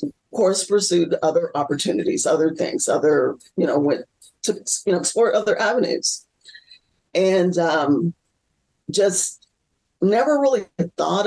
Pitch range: 170-245 Hz